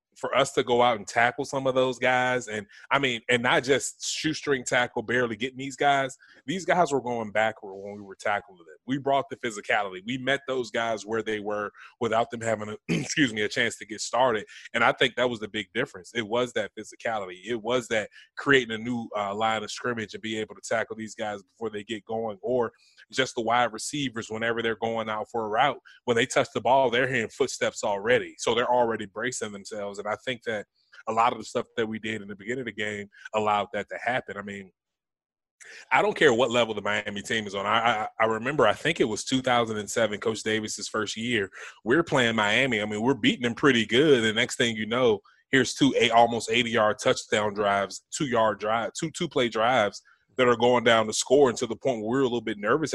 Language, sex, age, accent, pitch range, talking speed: English, male, 20-39, American, 105-125 Hz, 230 wpm